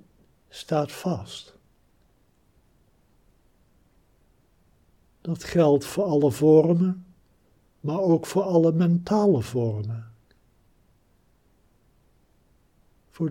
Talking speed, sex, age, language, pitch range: 65 wpm, male, 60-79, Dutch, 110-160 Hz